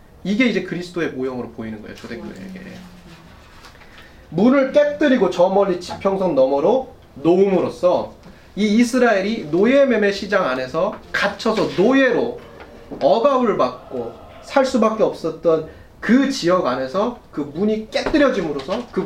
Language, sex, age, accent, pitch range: Korean, male, 30-49, native, 140-230 Hz